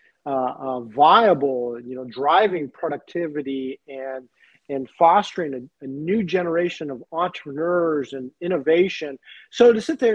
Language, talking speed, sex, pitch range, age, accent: English, 130 wpm, male, 140-175 Hz, 40-59, American